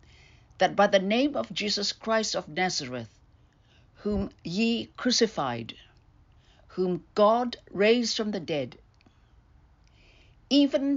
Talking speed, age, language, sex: 105 wpm, 60-79, English, female